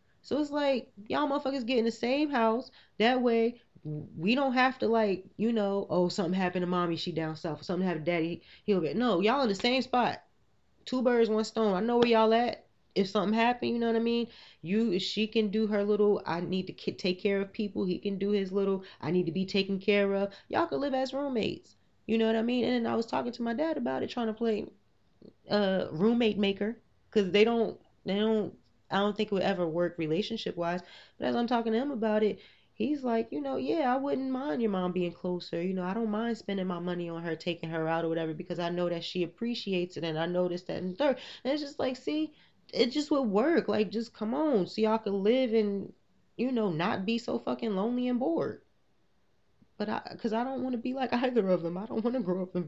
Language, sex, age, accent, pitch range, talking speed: English, female, 20-39, American, 180-235 Hz, 245 wpm